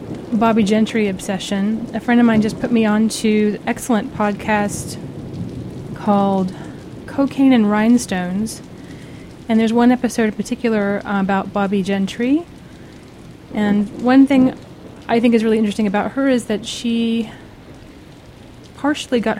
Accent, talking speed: American, 135 wpm